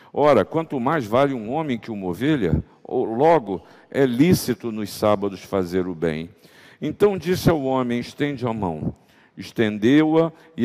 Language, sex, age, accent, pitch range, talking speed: Portuguese, male, 50-69, Brazilian, 105-145 Hz, 145 wpm